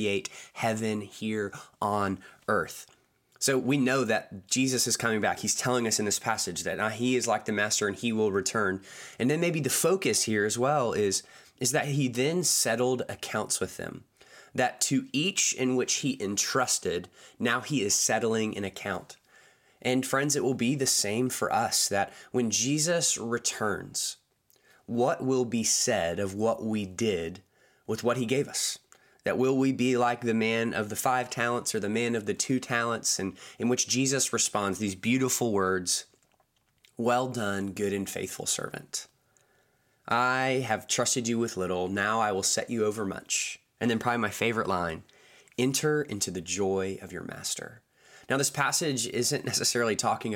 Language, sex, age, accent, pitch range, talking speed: English, male, 20-39, American, 105-125 Hz, 180 wpm